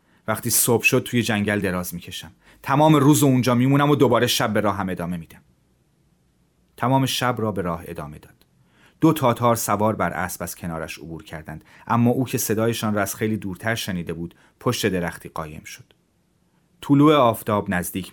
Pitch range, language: 95-125 Hz, Persian